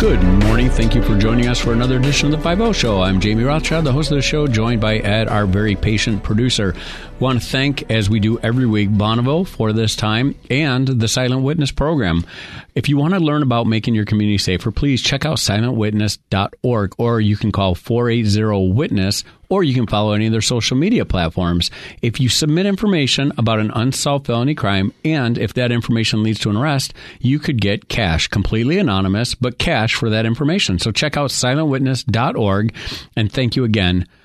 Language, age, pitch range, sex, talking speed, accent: English, 40-59, 105-135 Hz, male, 200 wpm, American